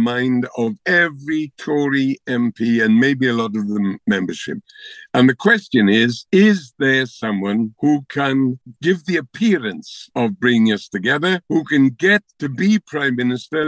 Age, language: 60-79, English